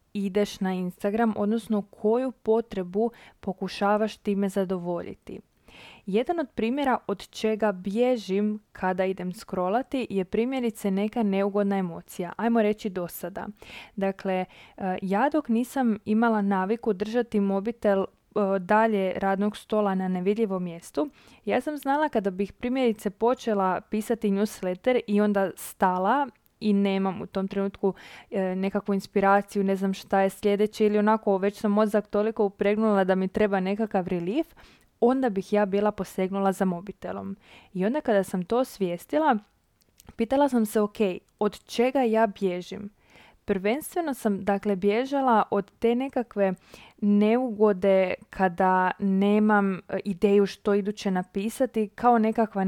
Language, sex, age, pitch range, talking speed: Croatian, female, 20-39, 195-225 Hz, 130 wpm